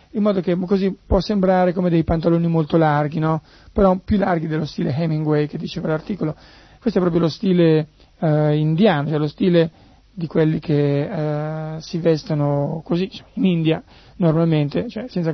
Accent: native